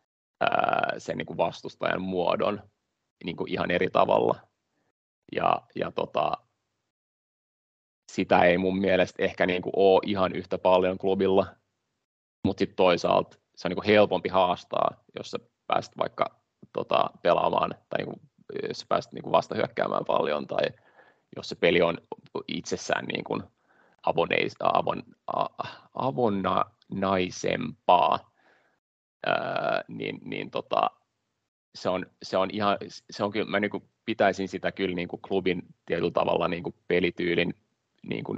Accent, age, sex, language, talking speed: native, 30-49, male, Finnish, 100 wpm